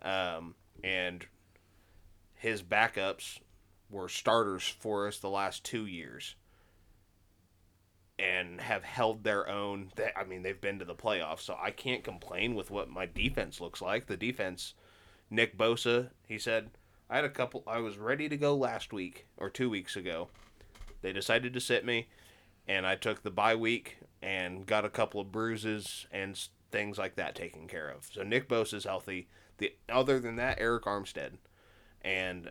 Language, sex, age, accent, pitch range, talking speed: English, male, 20-39, American, 95-115 Hz, 170 wpm